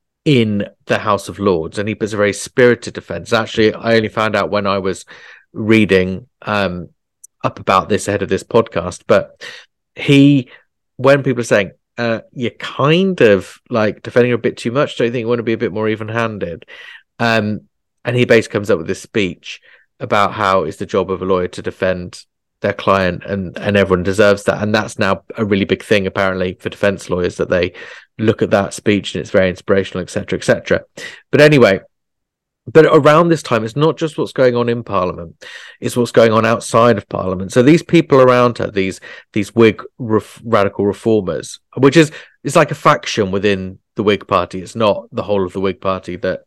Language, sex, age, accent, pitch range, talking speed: English, male, 30-49, British, 95-125 Hz, 205 wpm